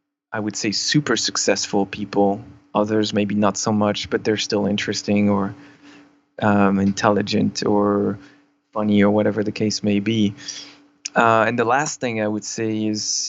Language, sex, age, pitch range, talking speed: English, male, 20-39, 105-115 Hz, 160 wpm